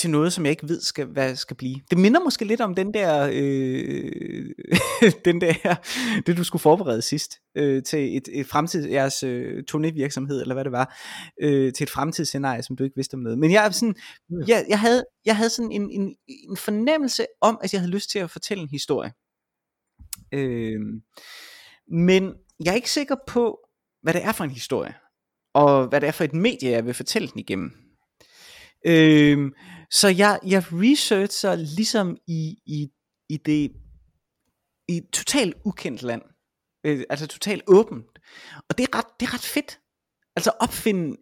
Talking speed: 180 wpm